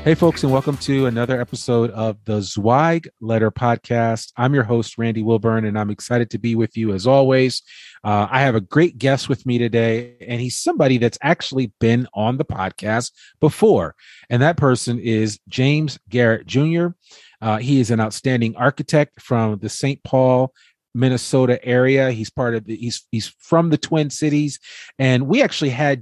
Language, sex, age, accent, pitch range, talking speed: English, male, 40-59, American, 110-130 Hz, 180 wpm